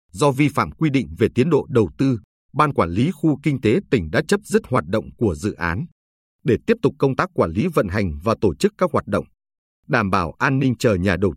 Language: Vietnamese